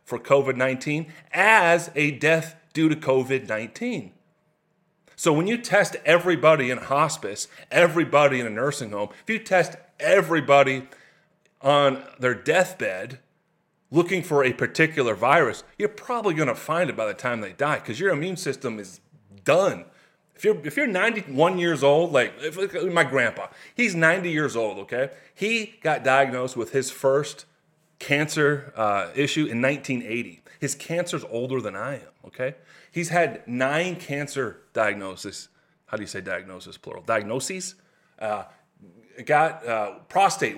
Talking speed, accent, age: 145 wpm, American, 30-49